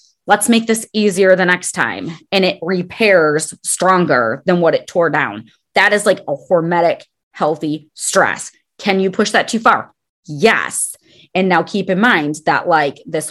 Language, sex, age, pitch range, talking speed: English, female, 30-49, 170-215 Hz, 170 wpm